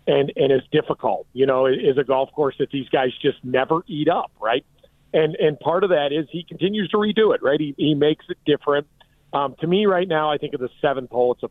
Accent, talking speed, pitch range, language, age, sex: American, 255 wpm, 125-160 Hz, English, 40-59, male